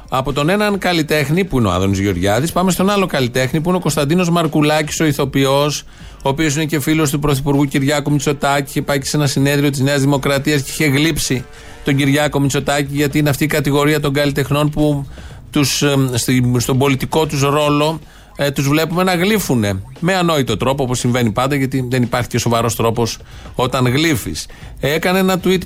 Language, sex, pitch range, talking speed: Greek, male, 125-165 Hz, 180 wpm